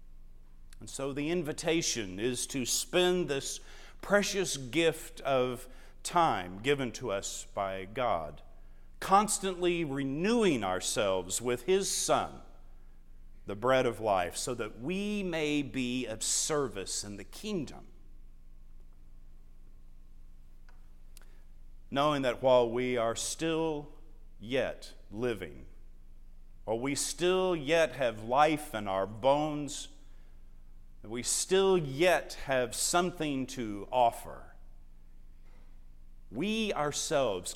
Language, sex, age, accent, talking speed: English, male, 50-69, American, 100 wpm